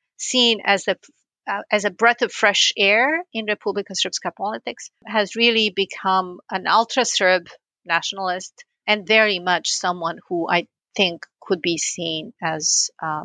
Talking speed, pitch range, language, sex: 145 wpm, 185-225 Hz, English, female